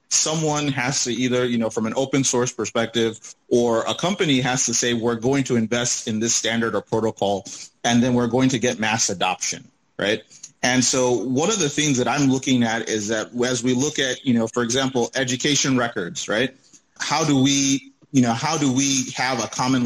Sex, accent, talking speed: male, American, 210 wpm